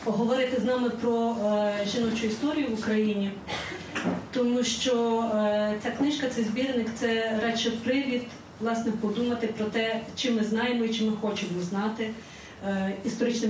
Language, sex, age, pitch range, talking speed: Ukrainian, female, 30-49, 210-245 Hz, 135 wpm